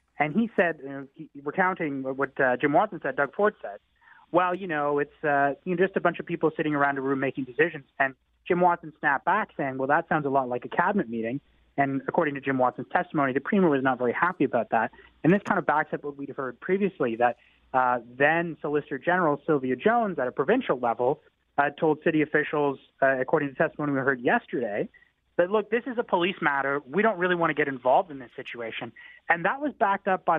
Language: English